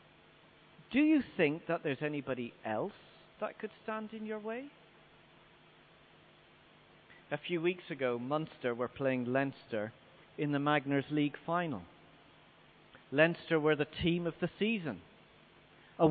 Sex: male